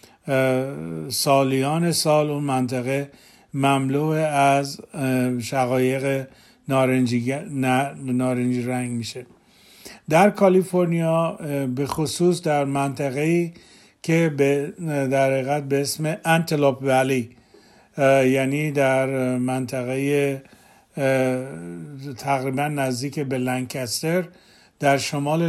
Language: Persian